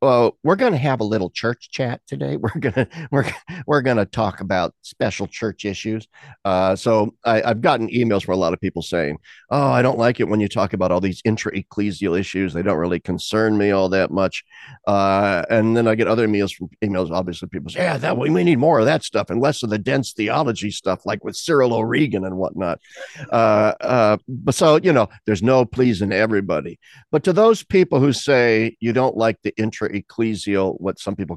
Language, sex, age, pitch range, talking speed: English, male, 50-69, 95-115 Hz, 220 wpm